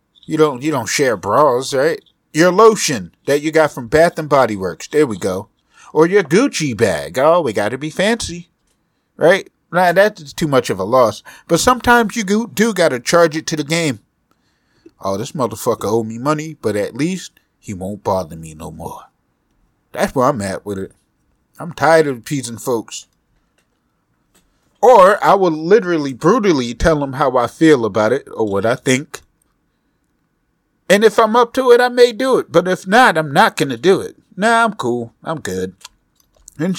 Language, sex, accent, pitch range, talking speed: English, male, American, 135-190 Hz, 190 wpm